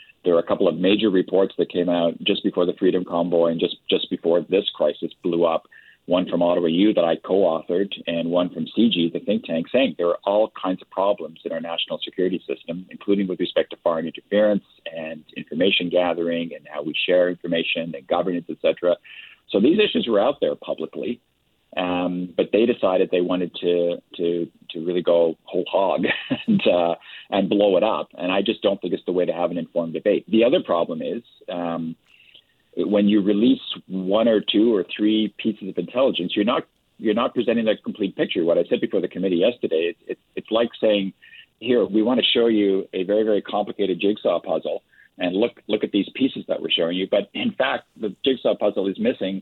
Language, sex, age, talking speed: English, male, 40-59, 210 wpm